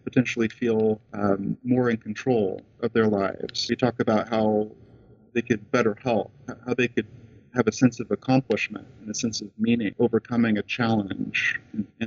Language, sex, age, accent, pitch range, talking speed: English, male, 40-59, American, 110-130 Hz, 170 wpm